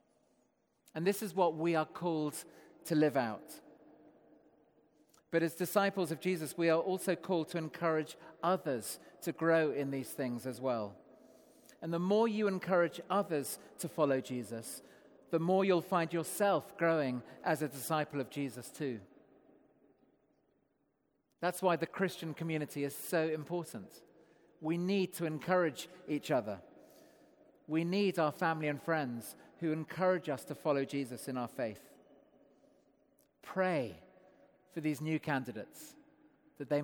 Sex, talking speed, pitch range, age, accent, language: male, 140 wpm, 140-175 Hz, 40-59, British, English